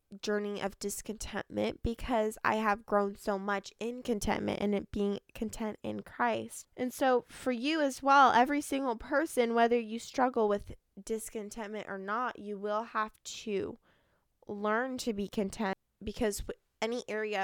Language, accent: English, American